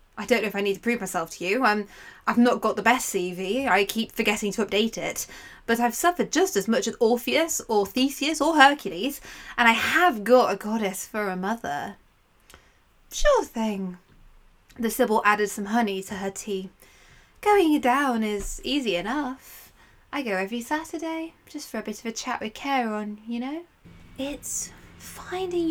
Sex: female